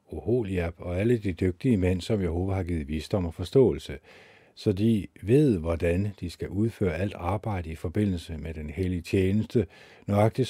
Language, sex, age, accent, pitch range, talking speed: Danish, male, 50-69, native, 85-110 Hz, 160 wpm